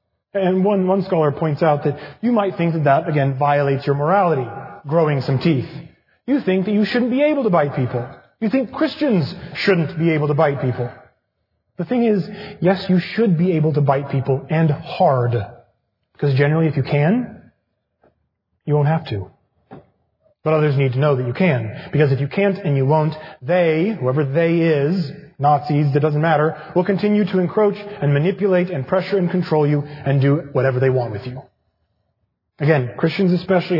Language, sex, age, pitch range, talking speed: English, male, 30-49, 135-180 Hz, 185 wpm